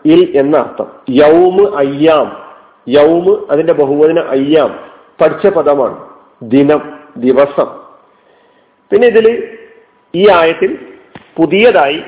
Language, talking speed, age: Malayalam, 90 wpm, 40-59